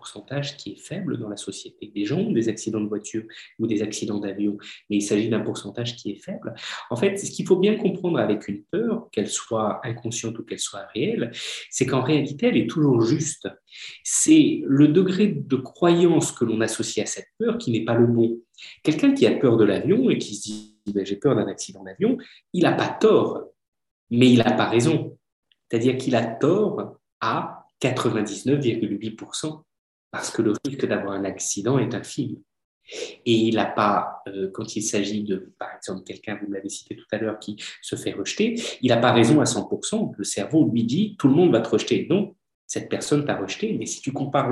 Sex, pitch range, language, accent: male, 105-145 Hz, French, French